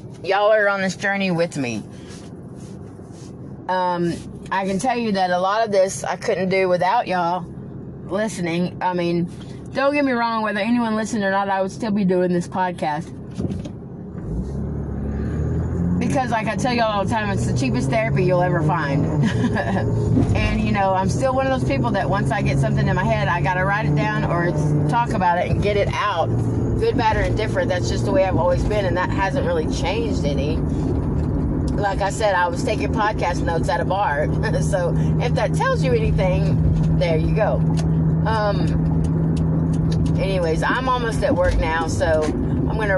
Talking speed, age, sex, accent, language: 185 wpm, 30-49, female, American, English